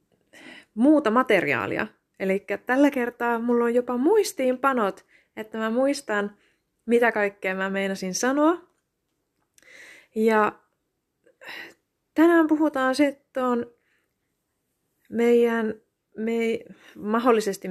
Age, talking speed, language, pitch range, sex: 20-39, 80 wpm, Finnish, 190-245 Hz, female